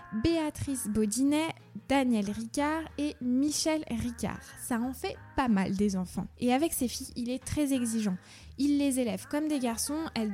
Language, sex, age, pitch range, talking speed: French, female, 20-39, 215-270 Hz, 170 wpm